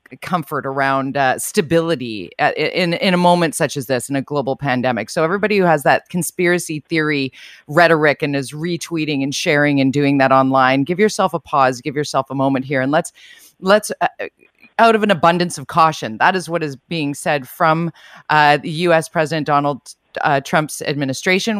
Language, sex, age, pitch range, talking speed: English, female, 30-49, 145-180 Hz, 190 wpm